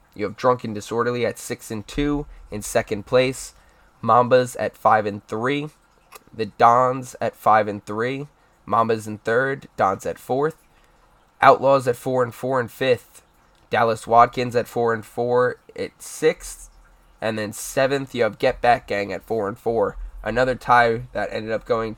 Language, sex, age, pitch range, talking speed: English, male, 10-29, 105-130 Hz, 165 wpm